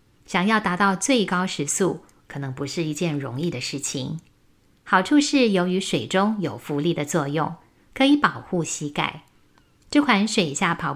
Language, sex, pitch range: Chinese, female, 150-195 Hz